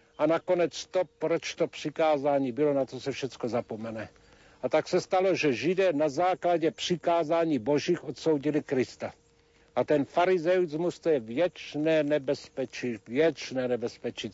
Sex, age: male, 70-89